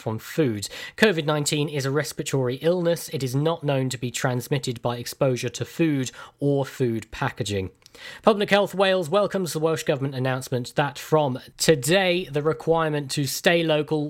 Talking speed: 160 wpm